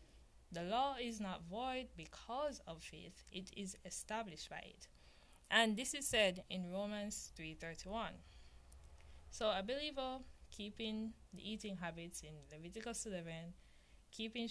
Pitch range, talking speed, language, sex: 165-220 Hz, 130 wpm, English, female